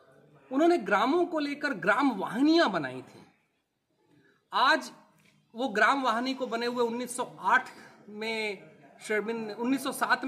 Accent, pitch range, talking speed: native, 165-245 Hz, 110 wpm